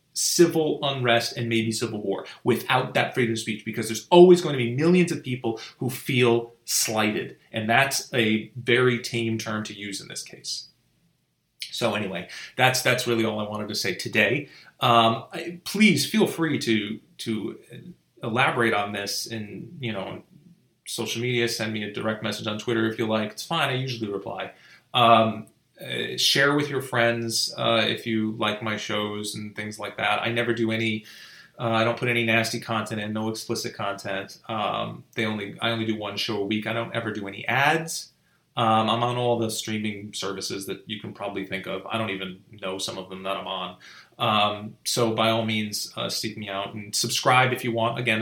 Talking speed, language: 200 wpm, English